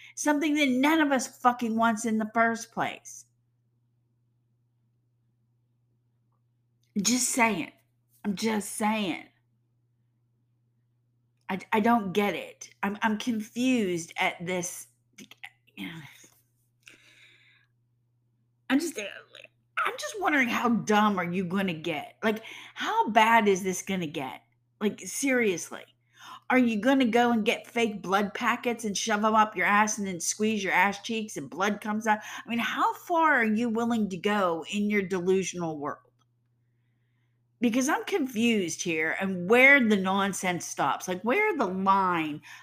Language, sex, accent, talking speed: English, female, American, 145 wpm